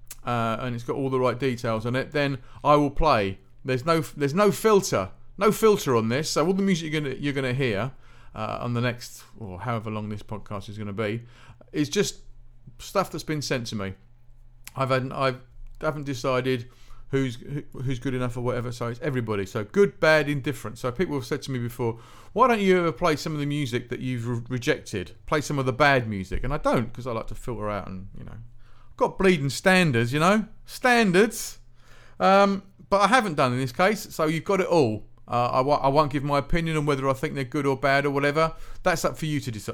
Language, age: English, 40-59